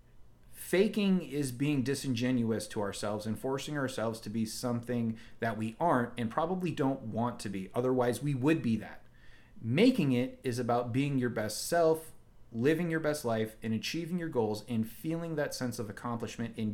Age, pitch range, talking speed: 30-49, 115-160 Hz, 175 wpm